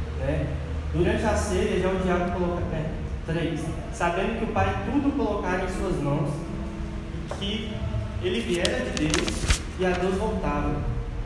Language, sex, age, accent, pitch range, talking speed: Portuguese, male, 20-39, Brazilian, 165-205 Hz, 155 wpm